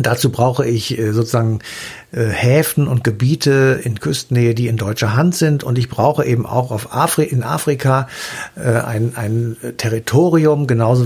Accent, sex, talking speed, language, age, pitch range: German, male, 145 wpm, German, 60-79, 115-140 Hz